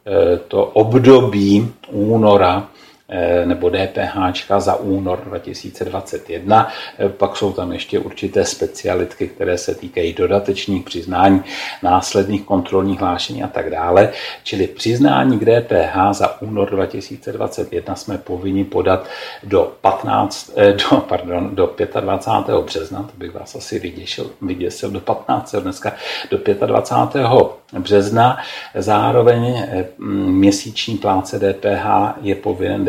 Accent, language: native, Czech